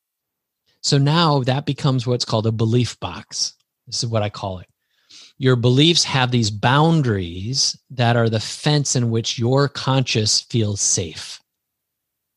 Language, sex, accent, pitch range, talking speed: English, male, American, 110-140 Hz, 145 wpm